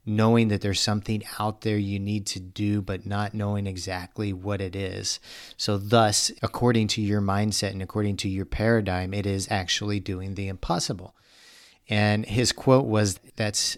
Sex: male